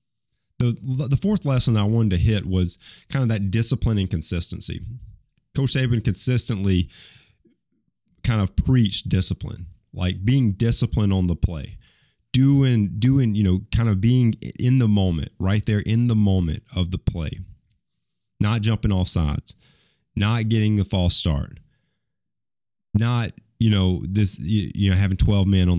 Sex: male